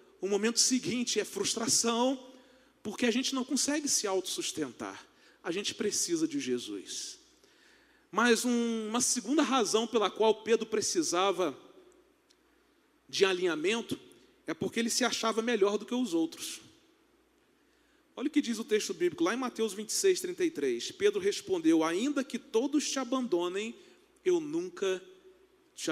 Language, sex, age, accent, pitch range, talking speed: Portuguese, male, 40-59, Brazilian, 235-340 Hz, 135 wpm